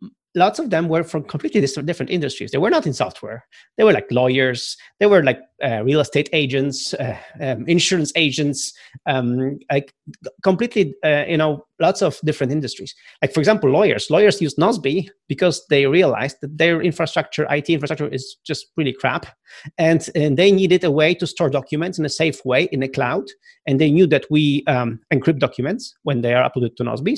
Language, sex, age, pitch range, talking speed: English, male, 30-49, 140-175 Hz, 190 wpm